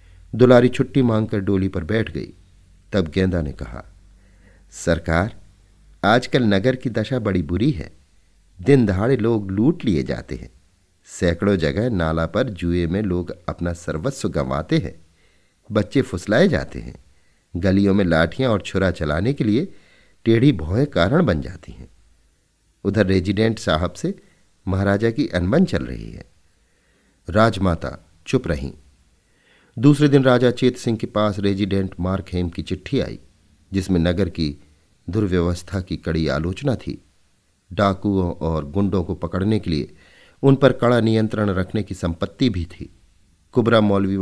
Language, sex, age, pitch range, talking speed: Hindi, male, 50-69, 85-105 Hz, 145 wpm